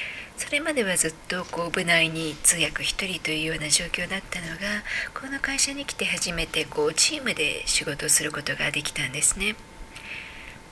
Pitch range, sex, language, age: 160-230 Hz, female, Japanese, 40-59